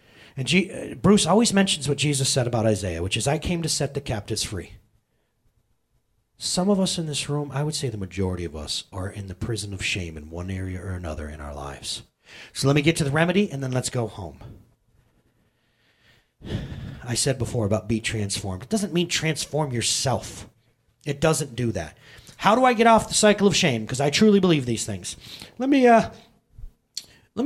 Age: 30-49